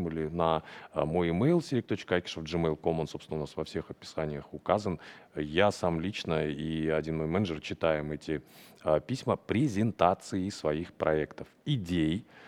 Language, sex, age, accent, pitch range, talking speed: Russian, male, 30-49, native, 80-95 Hz, 130 wpm